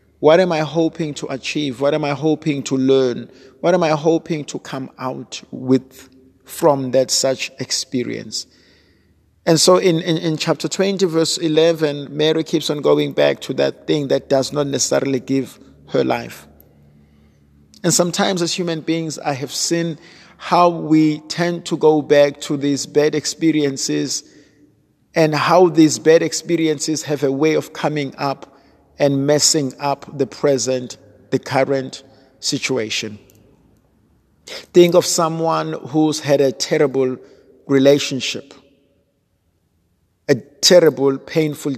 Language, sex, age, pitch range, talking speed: English, male, 50-69, 130-160 Hz, 140 wpm